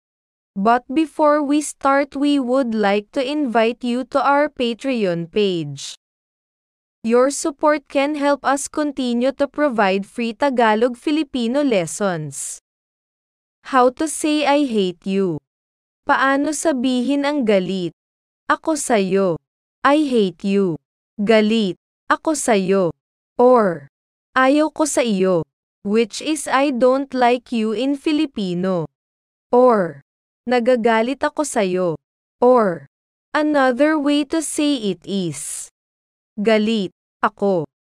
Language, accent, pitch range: Filipino, native, 195-285 Hz